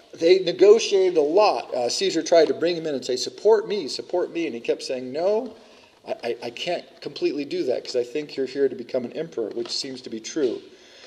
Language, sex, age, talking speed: English, male, 40-59, 230 wpm